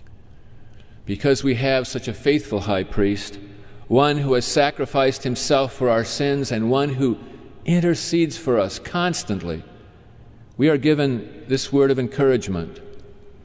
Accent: American